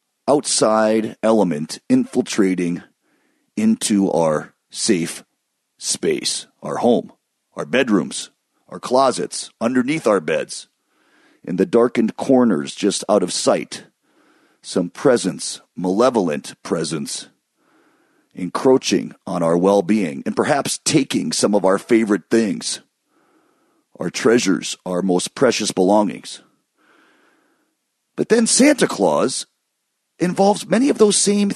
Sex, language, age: male, English, 40-59